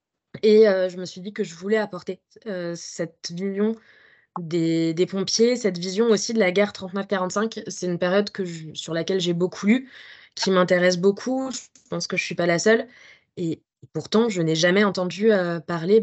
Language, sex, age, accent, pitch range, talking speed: French, female, 20-39, French, 180-215 Hz, 200 wpm